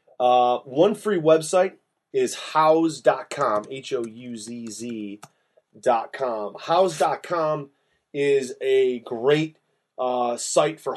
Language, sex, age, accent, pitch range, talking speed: English, male, 30-49, American, 120-155 Hz, 105 wpm